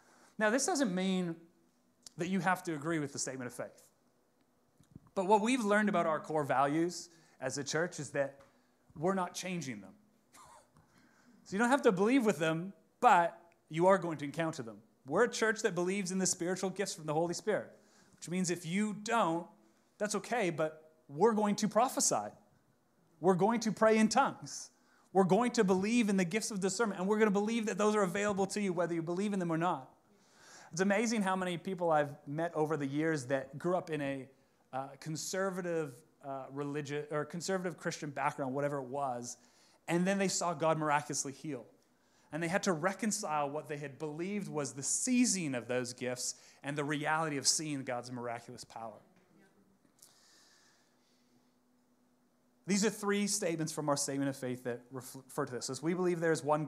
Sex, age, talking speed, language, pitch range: male, 30-49, 190 wpm, English, 145-195 Hz